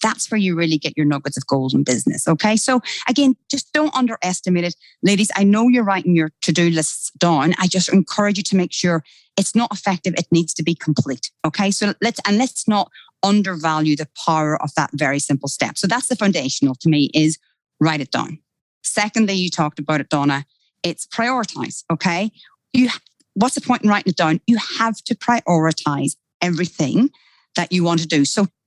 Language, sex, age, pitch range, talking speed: English, female, 30-49, 160-225 Hz, 195 wpm